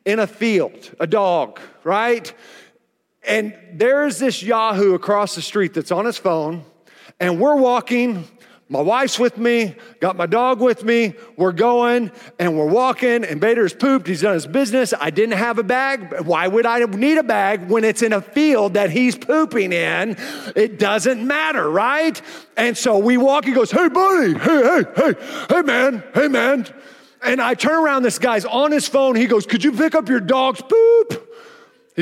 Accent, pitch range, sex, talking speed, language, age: American, 205-270 Hz, male, 190 wpm, English, 40-59